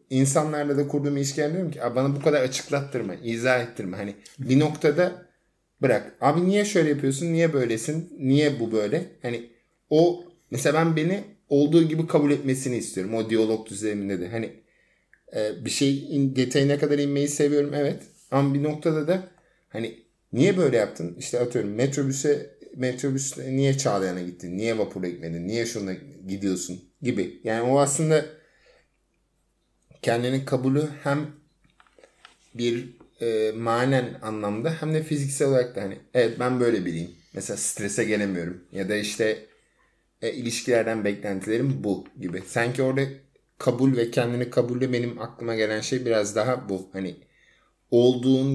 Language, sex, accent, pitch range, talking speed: Turkish, male, native, 110-145 Hz, 140 wpm